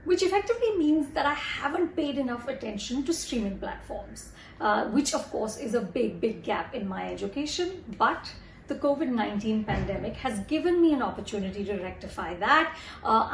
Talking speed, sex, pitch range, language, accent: 165 wpm, female, 210-290 Hz, English, Indian